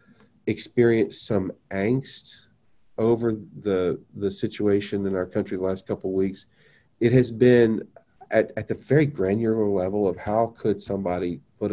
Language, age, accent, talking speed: English, 40-59, American, 150 wpm